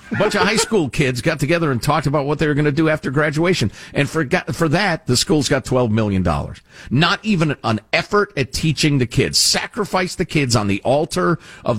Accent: American